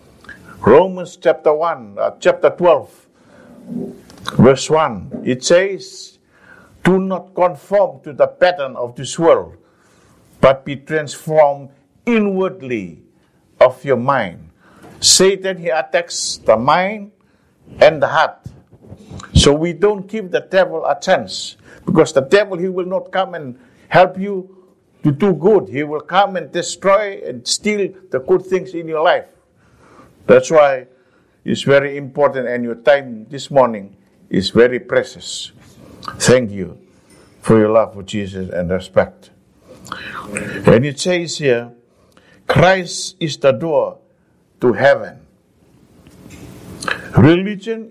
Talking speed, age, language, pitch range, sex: 125 wpm, 50-69, English, 135-190 Hz, male